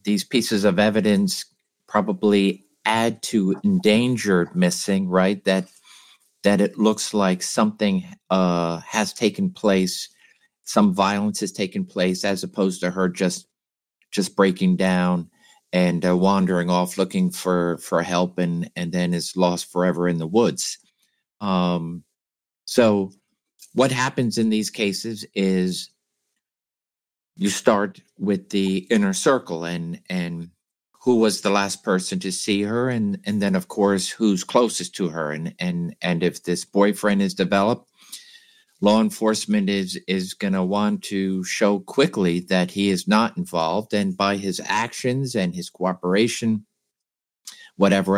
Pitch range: 90-115 Hz